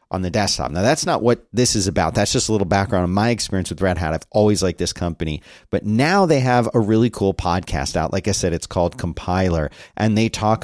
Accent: American